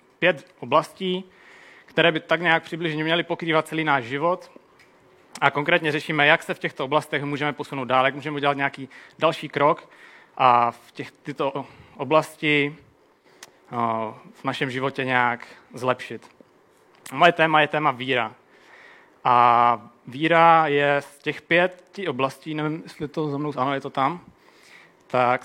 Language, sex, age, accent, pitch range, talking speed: Czech, male, 30-49, native, 135-165 Hz, 150 wpm